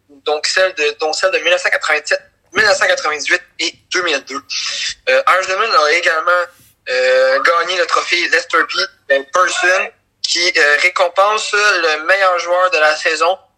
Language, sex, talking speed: French, male, 125 wpm